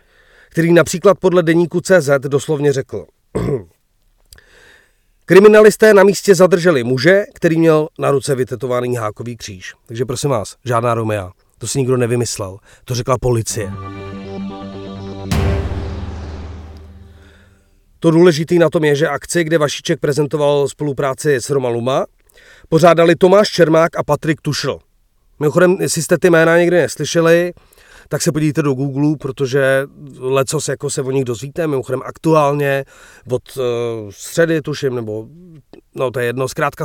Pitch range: 115-160 Hz